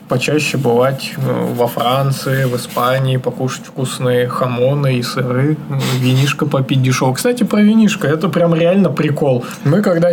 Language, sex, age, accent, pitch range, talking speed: Russian, male, 20-39, native, 130-165 Hz, 135 wpm